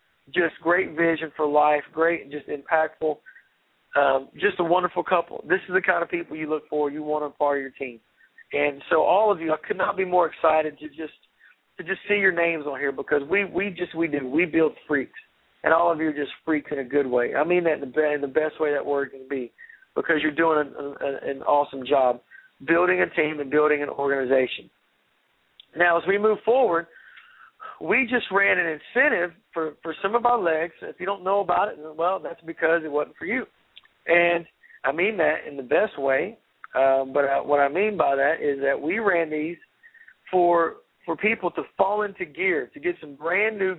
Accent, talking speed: American, 215 wpm